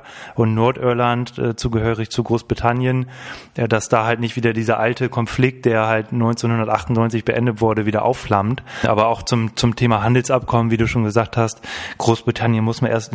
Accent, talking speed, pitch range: German, 170 wpm, 110-120 Hz